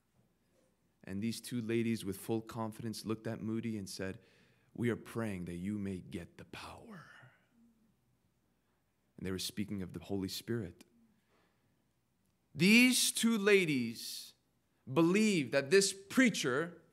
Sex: male